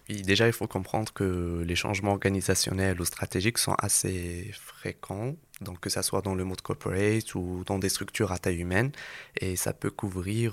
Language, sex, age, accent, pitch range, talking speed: French, male, 20-39, French, 95-110 Hz, 190 wpm